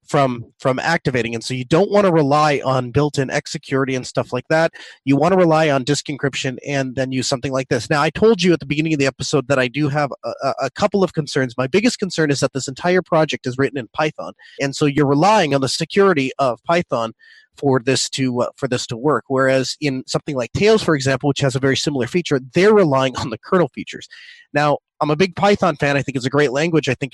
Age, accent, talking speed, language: 30-49, American, 250 wpm, English